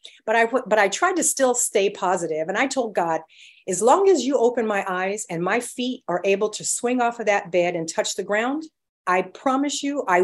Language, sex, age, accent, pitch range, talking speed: English, female, 50-69, American, 185-275 Hz, 230 wpm